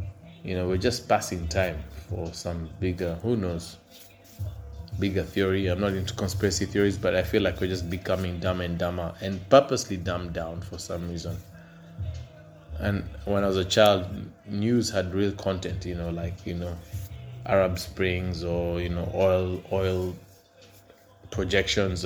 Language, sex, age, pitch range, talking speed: English, male, 20-39, 90-100 Hz, 160 wpm